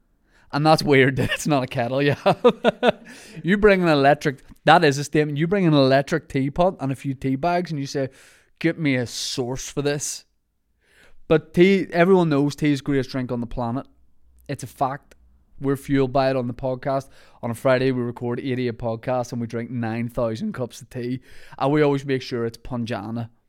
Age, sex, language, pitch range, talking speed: 20-39, male, English, 120-145 Hz, 200 wpm